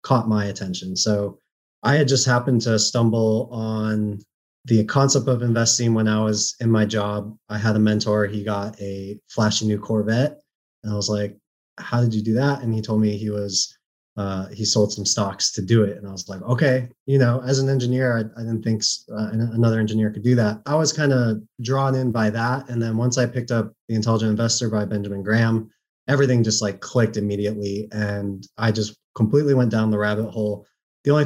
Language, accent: English, American